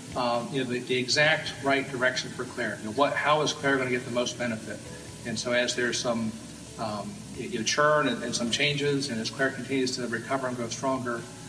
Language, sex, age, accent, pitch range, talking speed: English, male, 40-59, American, 120-140 Hz, 230 wpm